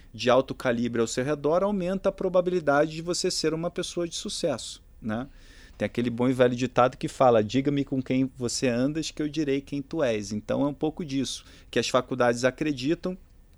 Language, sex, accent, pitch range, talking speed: Portuguese, male, Brazilian, 120-160 Hz, 200 wpm